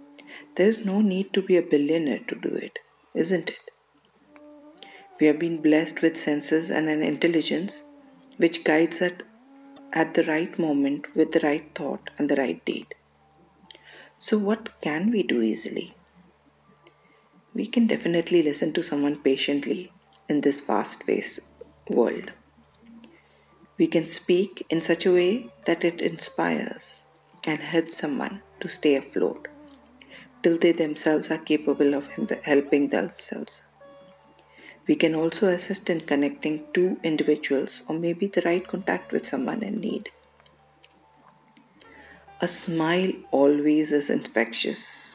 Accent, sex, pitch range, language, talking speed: Indian, female, 150-205 Hz, English, 135 wpm